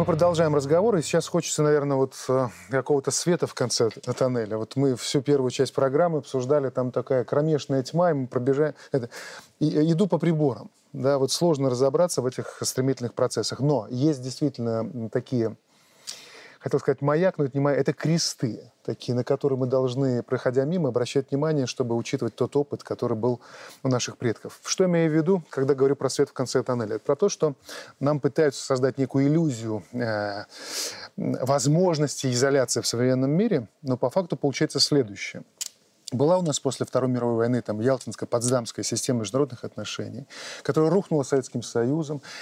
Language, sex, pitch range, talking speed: Russian, male, 125-155 Hz, 160 wpm